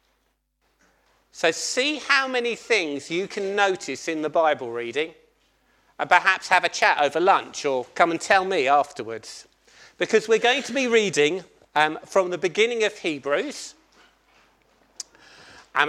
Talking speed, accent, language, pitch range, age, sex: 145 wpm, British, English, 155-225 Hz, 40-59, male